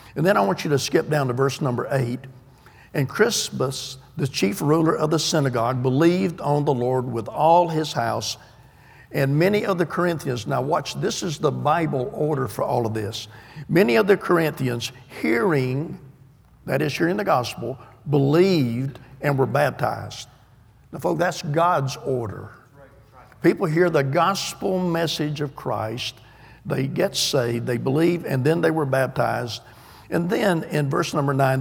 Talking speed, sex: 165 wpm, male